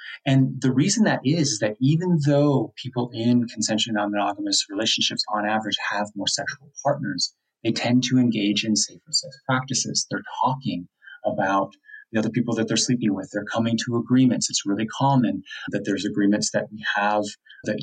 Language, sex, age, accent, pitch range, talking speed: English, male, 30-49, American, 105-135 Hz, 175 wpm